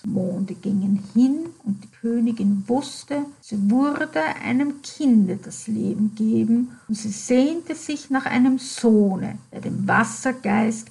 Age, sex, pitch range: 50-69, female, 205-255 Hz